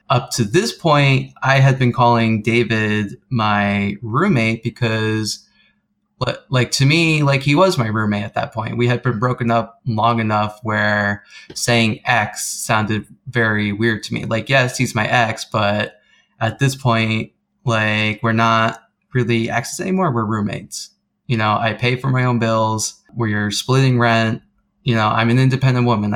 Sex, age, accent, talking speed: male, 20-39, American, 165 wpm